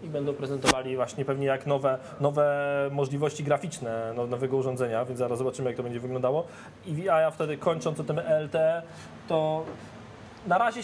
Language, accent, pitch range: Polish, native, 125-155 Hz